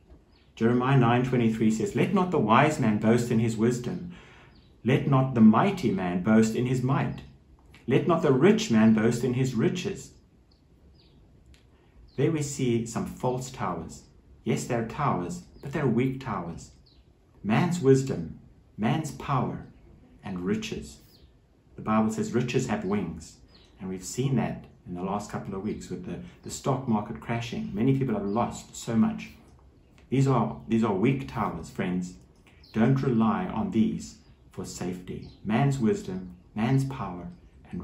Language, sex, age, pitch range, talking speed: English, male, 60-79, 90-130 Hz, 155 wpm